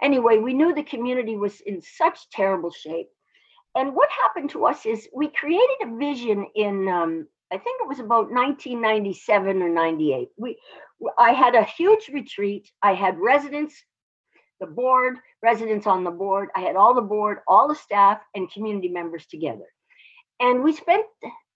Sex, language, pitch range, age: female, English, 190-300 Hz, 60-79